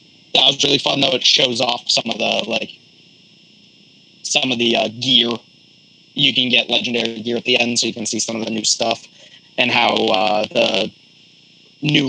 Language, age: English, 30-49